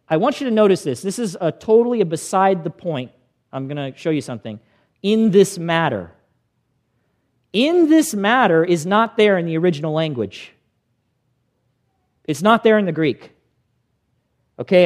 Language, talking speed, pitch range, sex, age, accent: English, 160 wpm, 160-215 Hz, male, 40-59, American